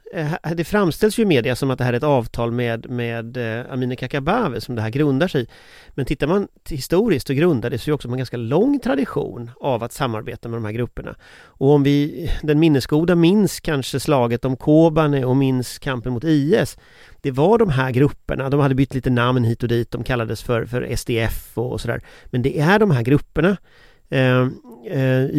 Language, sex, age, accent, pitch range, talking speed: English, male, 30-49, Swedish, 125-170 Hz, 205 wpm